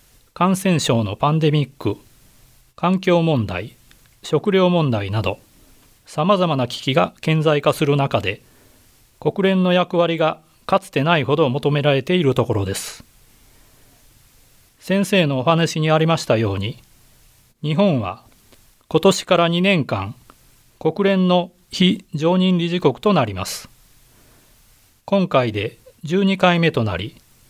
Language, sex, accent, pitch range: Japanese, male, native, 120-175 Hz